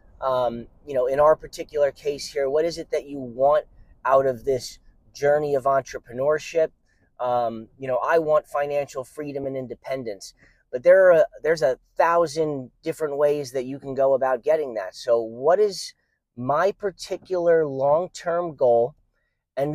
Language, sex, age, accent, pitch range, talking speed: English, male, 30-49, American, 125-160 Hz, 160 wpm